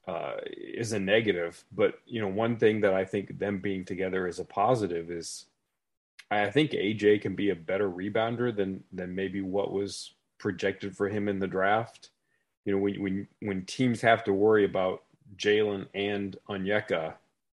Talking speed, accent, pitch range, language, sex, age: 175 wpm, American, 95-105 Hz, English, male, 30-49